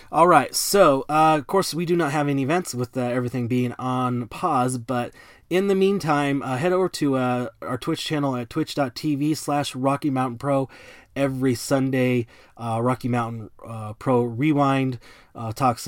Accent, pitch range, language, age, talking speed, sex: American, 115-135 Hz, English, 20-39, 170 wpm, male